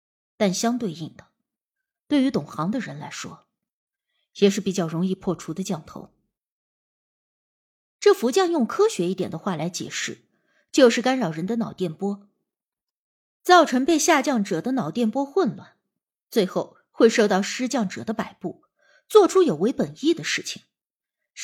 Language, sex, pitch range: Chinese, female, 190-280 Hz